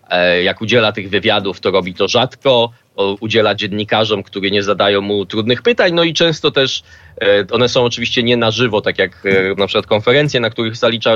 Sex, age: male, 20-39